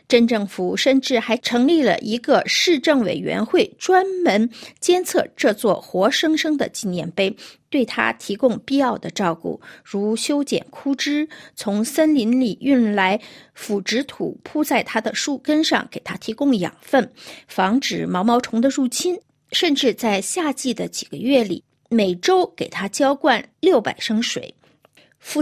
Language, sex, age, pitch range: Chinese, female, 50-69, 225-315 Hz